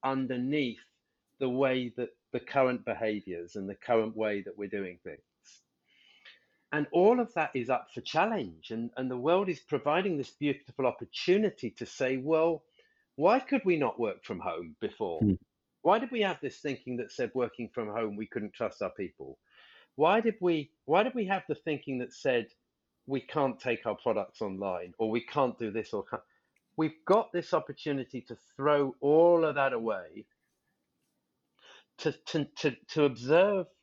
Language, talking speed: English, 170 wpm